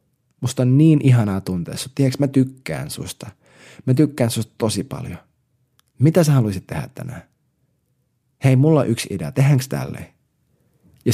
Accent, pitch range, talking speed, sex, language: native, 115-140 Hz, 140 wpm, male, Finnish